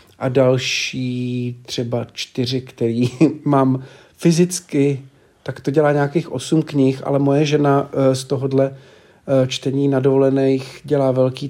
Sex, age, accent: male, 40-59, native